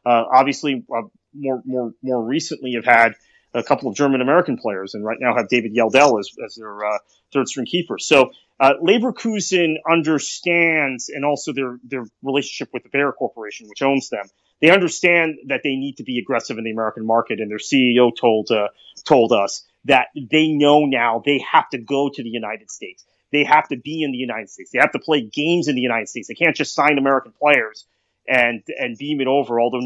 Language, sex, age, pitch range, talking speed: English, male, 30-49, 120-145 Hz, 205 wpm